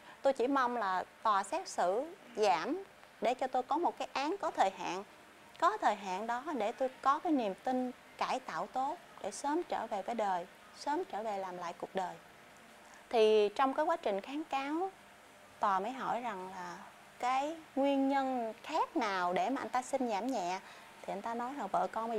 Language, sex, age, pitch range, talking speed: Vietnamese, female, 20-39, 200-270 Hz, 205 wpm